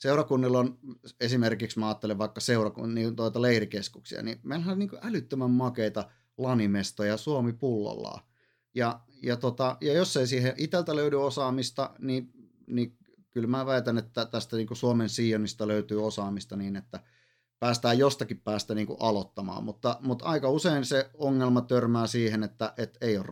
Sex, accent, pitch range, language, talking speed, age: male, native, 105-125 Hz, Finnish, 150 wpm, 30-49